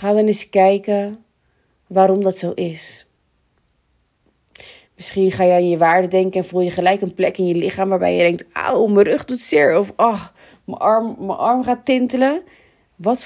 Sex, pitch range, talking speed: female, 180-225 Hz, 190 wpm